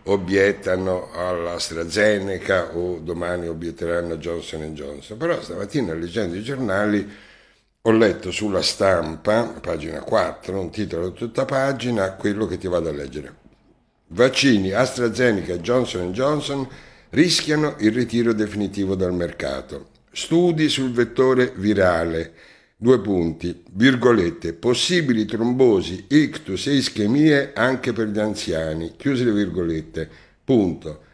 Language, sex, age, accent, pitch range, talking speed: Italian, male, 60-79, native, 90-130 Hz, 115 wpm